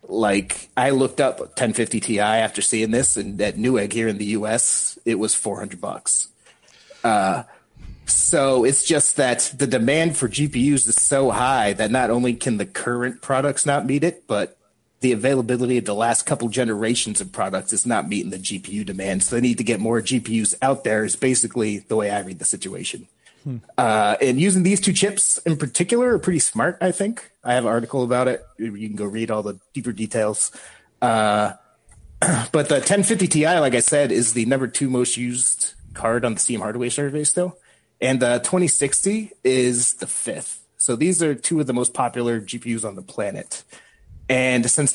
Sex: male